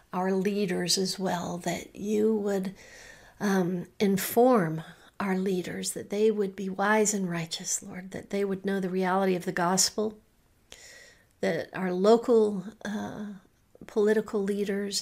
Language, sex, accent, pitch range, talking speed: English, female, American, 185-210 Hz, 135 wpm